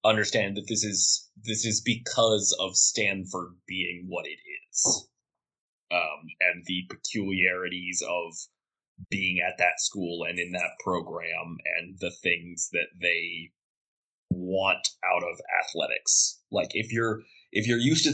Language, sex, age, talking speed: English, male, 20-39, 140 wpm